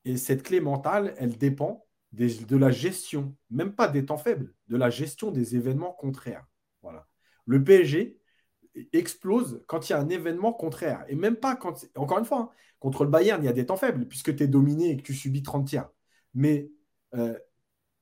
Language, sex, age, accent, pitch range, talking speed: French, male, 30-49, French, 125-175 Hz, 205 wpm